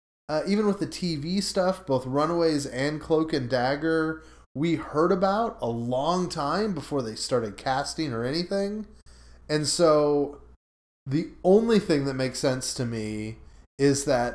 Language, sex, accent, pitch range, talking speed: English, male, American, 115-150 Hz, 150 wpm